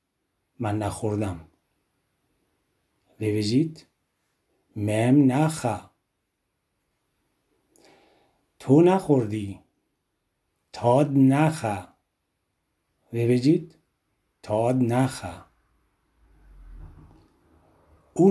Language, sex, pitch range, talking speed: Persian, male, 105-145 Hz, 45 wpm